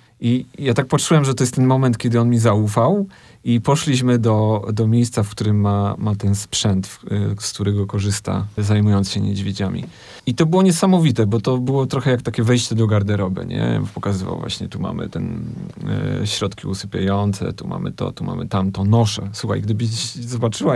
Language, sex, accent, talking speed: Polish, male, native, 175 wpm